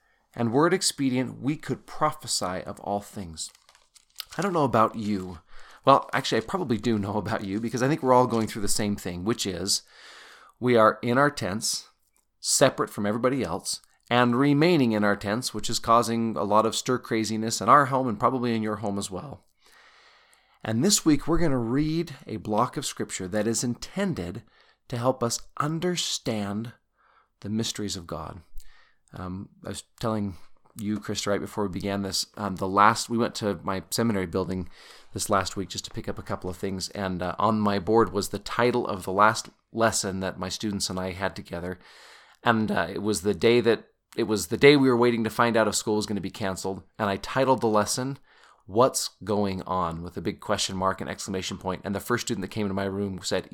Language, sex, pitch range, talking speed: English, male, 100-120 Hz, 210 wpm